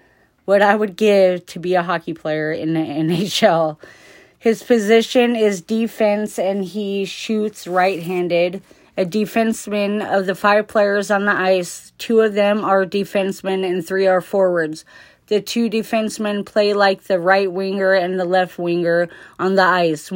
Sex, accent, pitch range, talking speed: female, American, 180-210 Hz, 160 wpm